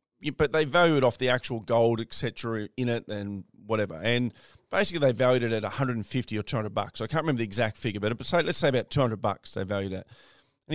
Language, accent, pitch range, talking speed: English, Australian, 115-145 Hz, 220 wpm